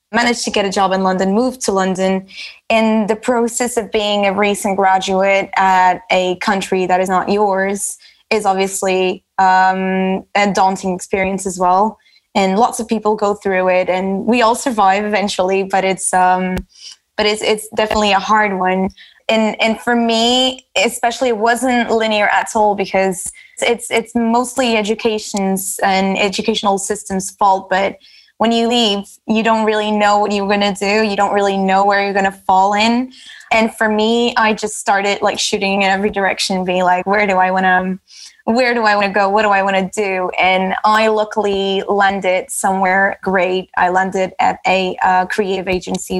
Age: 20-39